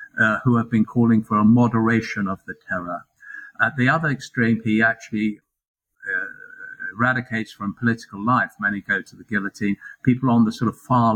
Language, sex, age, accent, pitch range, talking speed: English, male, 50-69, British, 105-140 Hz, 175 wpm